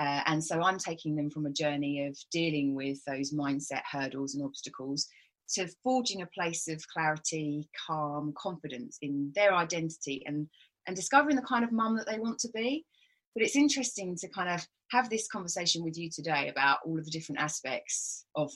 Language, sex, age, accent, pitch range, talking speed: English, female, 30-49, British, 150-220 Hz, 190 wpm